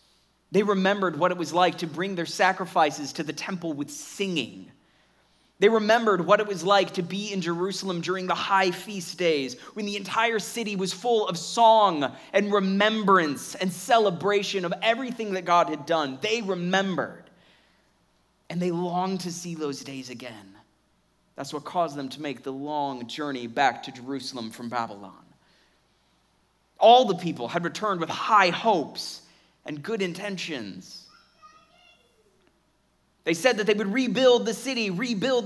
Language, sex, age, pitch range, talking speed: English, male, 30-49, 150-205 Hz, 155 wpm